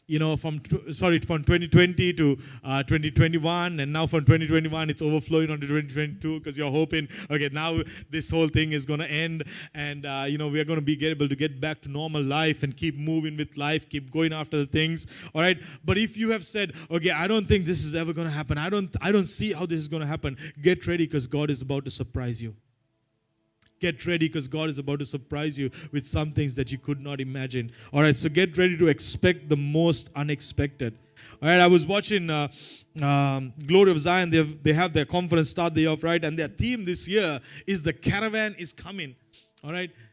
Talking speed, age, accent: 225 wpm, 30-49, Indian